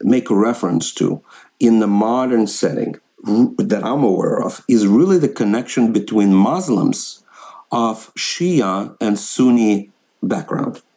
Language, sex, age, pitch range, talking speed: English, male, 50-69, 100-155 Hz, 125 wpm